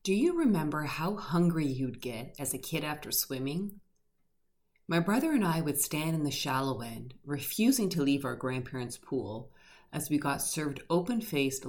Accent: American